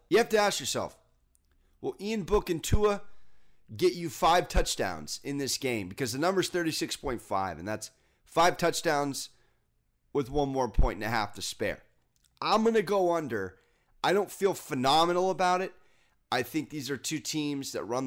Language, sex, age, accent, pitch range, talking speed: English, male, 30-49, American, 125-175 Hz, 180 wpm